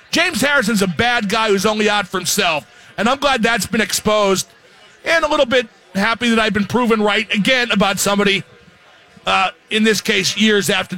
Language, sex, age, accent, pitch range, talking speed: English, male, 50-69, American, 205-250 Hz, 190 wpm